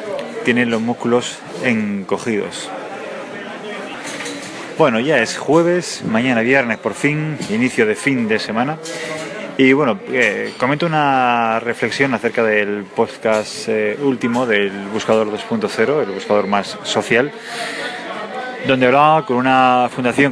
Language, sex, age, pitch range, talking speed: English, male, 20-39, 105-125 Hz, 120 wpm